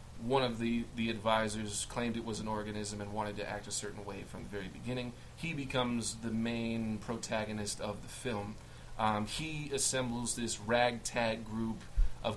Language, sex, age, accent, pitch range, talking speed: English, male, 20-39, American, 105-120 Hz, 175 wpm